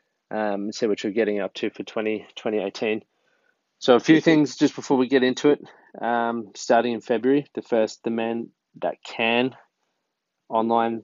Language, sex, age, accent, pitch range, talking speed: English, male, 20-39, Australian, 105-125 Hz, 165 wpm